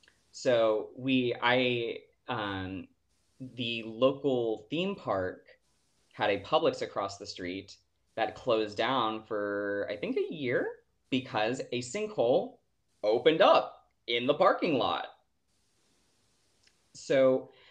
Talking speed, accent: 110 wpm, American